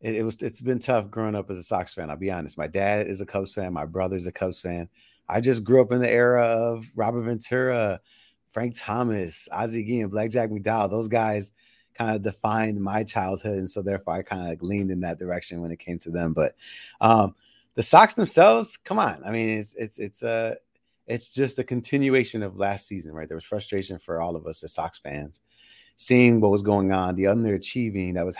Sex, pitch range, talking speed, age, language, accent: male, 95-115 Hz, 225 wpm, 30-49, English, American